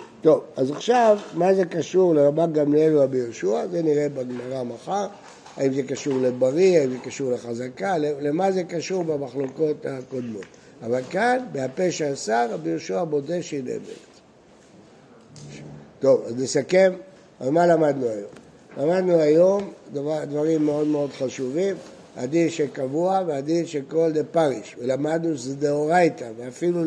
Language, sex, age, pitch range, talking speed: Hebrew, male, 60-79, 135-180 Hz, 135 wpm